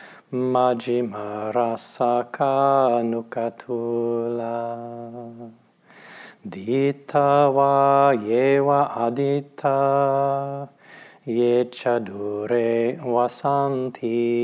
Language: English